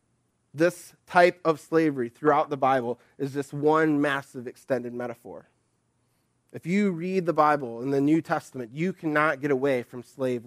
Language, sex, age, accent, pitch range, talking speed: English, male, 20-39, American, 135-170 Hz, 160 wpm